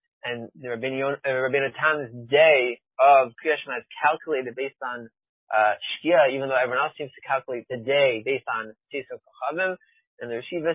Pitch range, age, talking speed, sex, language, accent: 130-170 Hz, 20-39, 165 wpm, male, English, American